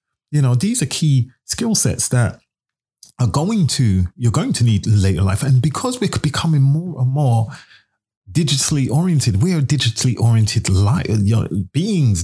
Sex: male